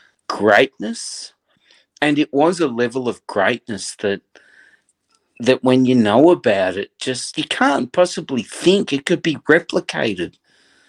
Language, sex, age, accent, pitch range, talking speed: English, male, 50-69, Australian, 115-170 Hz, 130 wpm